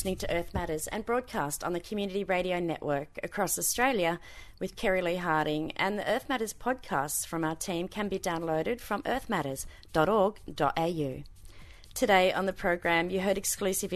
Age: 30-49